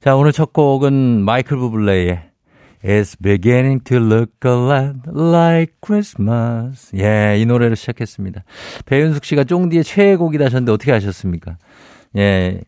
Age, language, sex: 50-69, Korean, male